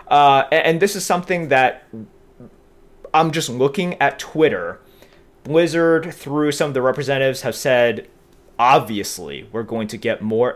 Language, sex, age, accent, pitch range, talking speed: English, male, 30-49, American, 115-165 Hz, 140 wpm